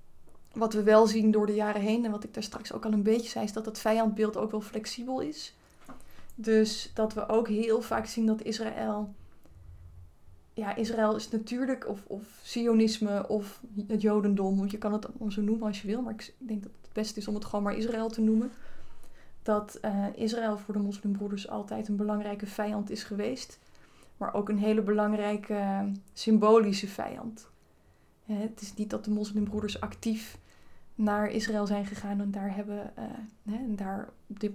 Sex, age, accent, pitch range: female, 20-39, Dutch, 205-220 Hz